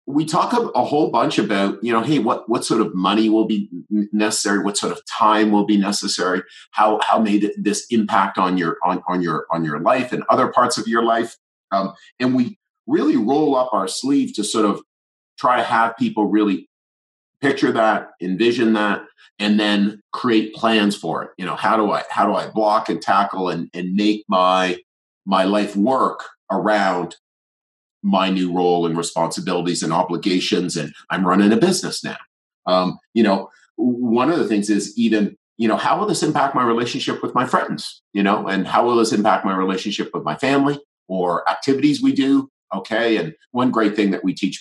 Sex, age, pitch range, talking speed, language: male, 40-59, 90-110 Hz, 195 wpm, English